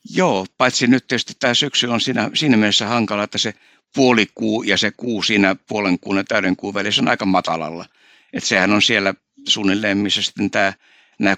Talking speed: 175 wpm